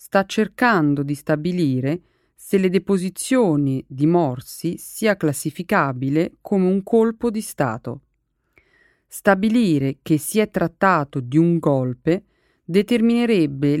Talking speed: 110 wpm